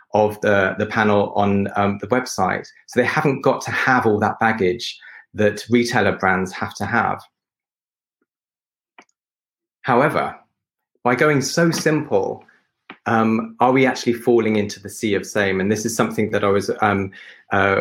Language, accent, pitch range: English, British, 105-125 Hz